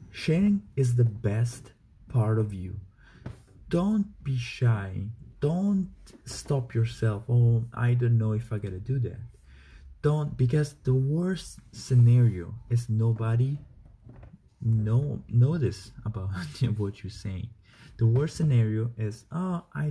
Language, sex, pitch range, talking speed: English, male, 105-130 Hz, 125 wpm